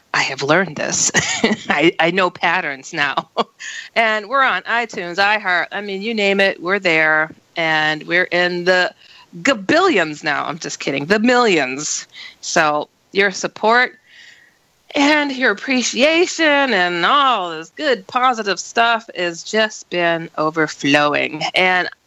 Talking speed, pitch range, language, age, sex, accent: 135 wpm, 175-255 Hz, English, 40-59, female, American